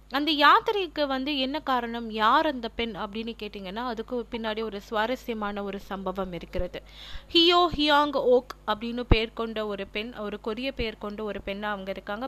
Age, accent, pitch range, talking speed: 30-49, native, 205-275 Hz, 135 wpm